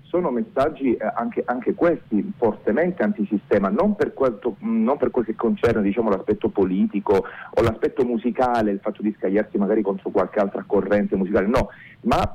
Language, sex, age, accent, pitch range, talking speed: Italian, male, 40-59, native, 105-135 Hz, 160 wpm